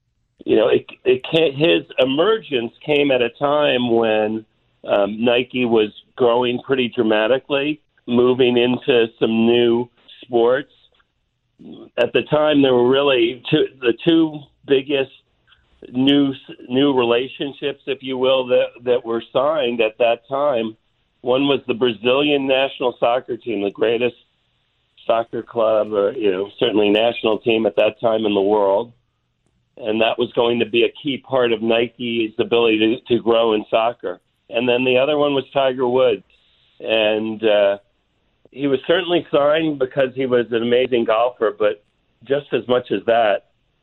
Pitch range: 110-135 Hz